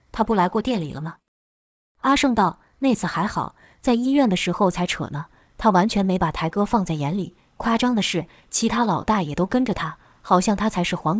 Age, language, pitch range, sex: 20-39, Chinese, 170-230 Hz, female